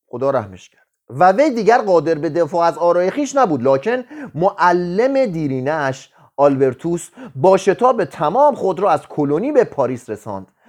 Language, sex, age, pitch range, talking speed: Persian, male, 30-49, 140-205 Hz, 150 wpm